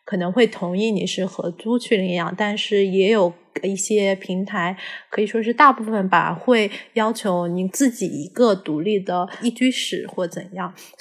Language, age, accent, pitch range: Chinese, 20-39, native, 185-245 Hz